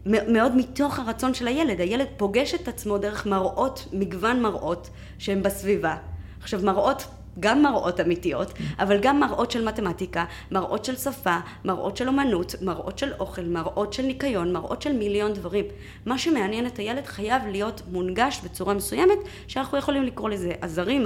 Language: Hebrew